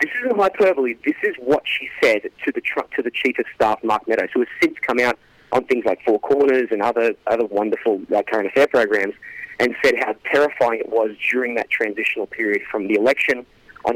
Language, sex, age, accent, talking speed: English, male, 30-49, Australian, 210 wpm